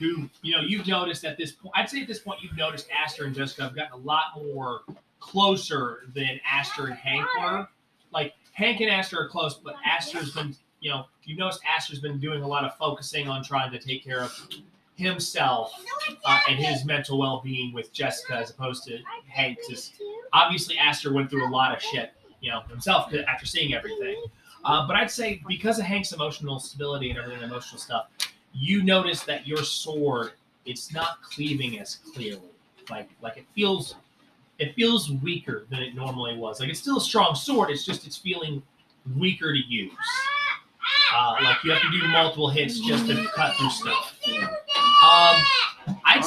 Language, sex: English, male